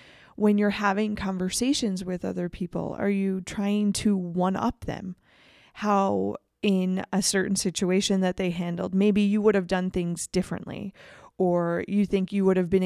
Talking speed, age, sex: 165 wpm, 20-39, female